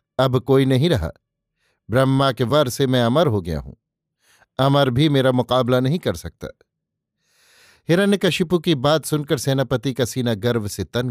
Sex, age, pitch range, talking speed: male, 50-69, 120-145 Hz, 160 wpm